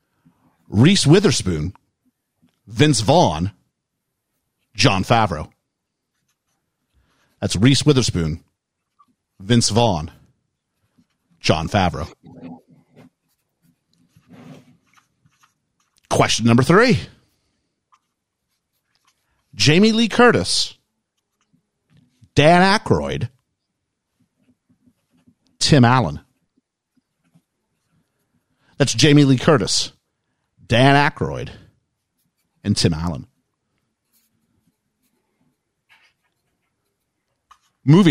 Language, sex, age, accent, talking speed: English, male, 50-69, American, 50 wpm